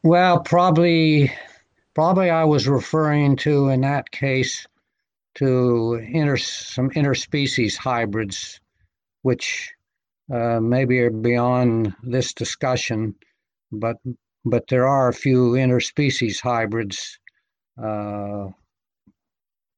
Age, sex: 60-79, male